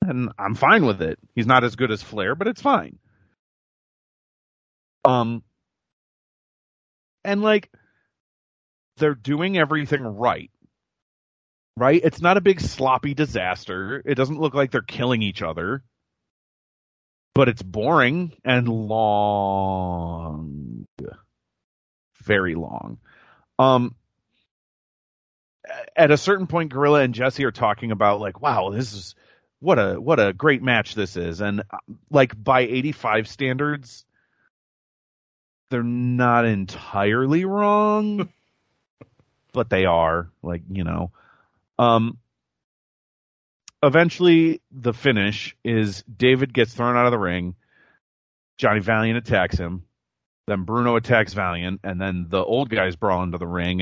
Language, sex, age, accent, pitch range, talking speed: English, male, 30-49, American, 95-140 Hz, 125 wpm